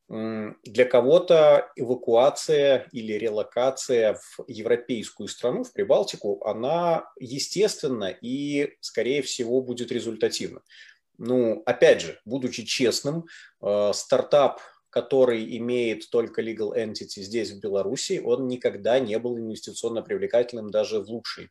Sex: male